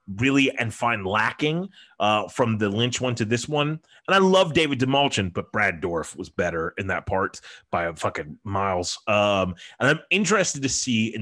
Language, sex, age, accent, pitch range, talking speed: English, male, 30-49, American, 105-150 Hz, 195 wpm